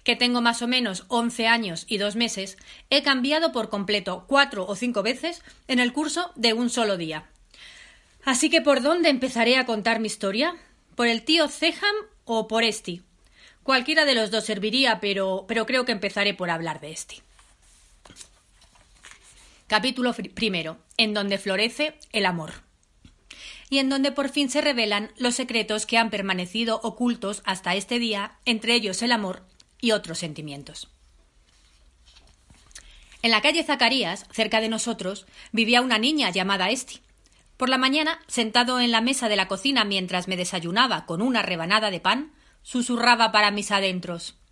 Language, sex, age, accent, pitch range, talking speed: Spanish, female, 30-49, Spanish, 190-245 Hz, 160 wpm